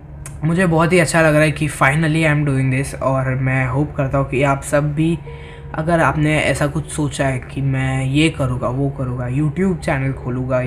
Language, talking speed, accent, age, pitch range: Hindi, 210 wpm, native, 20-39, 130-160 Hz